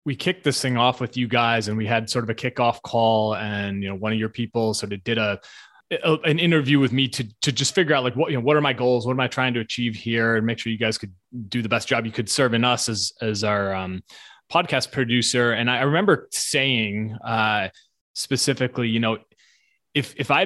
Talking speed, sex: 245 wpm, male